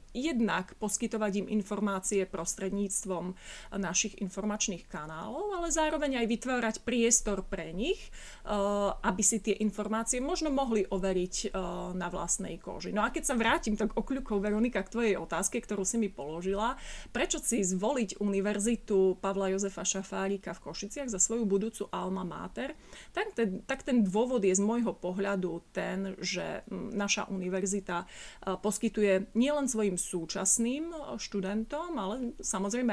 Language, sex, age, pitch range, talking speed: Slovak, female, 30-49, 190-225 Hz, 135 wpm